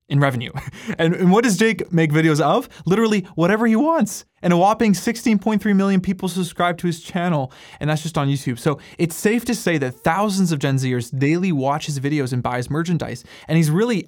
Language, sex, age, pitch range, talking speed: English, male, 20-39, 135-175 Hz, 210 wpm